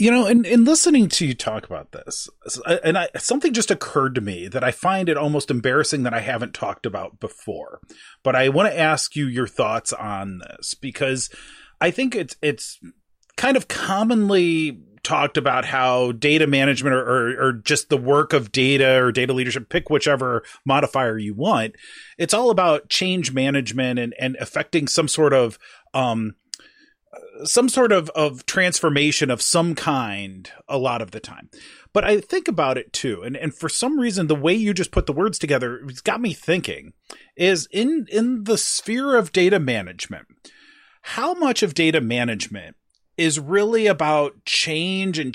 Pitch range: 130-200 Hz